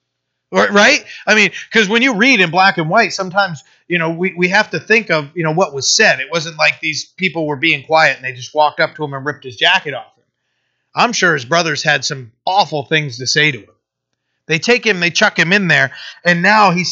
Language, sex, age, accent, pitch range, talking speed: English, male, 30-49, American, 120-165 Hz, 245 wpm